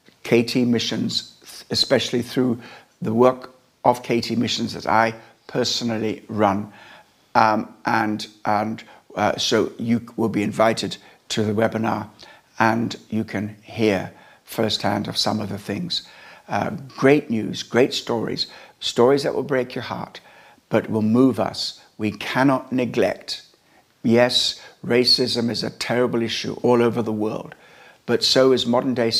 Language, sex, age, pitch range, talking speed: English, male, 60-79, 110-125 Hz, 140 wpm